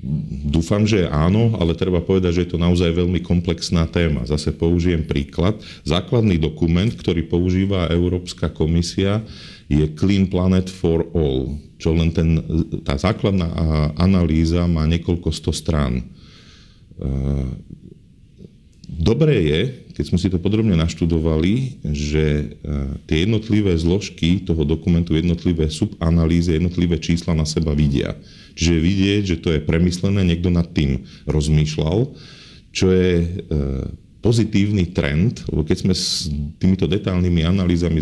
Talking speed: 125 wpm